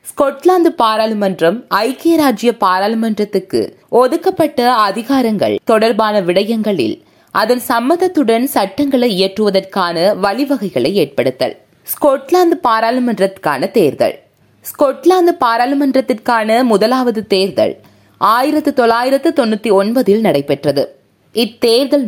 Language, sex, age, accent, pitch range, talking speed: Tamil, female, 20-39, native, 200-280 Hz, 70 wpm